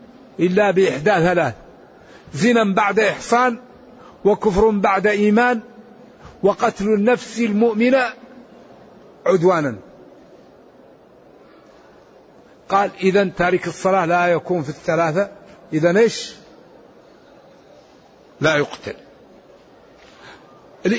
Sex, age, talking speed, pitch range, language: male, 60-79, 70 wpm, 180-210 Hz, Arabic